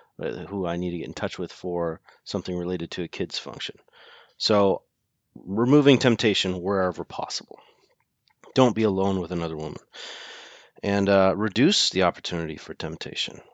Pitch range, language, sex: 85-110 Hz, English, male